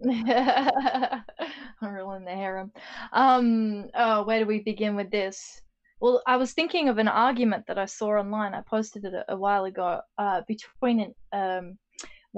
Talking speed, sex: 165 wpm, female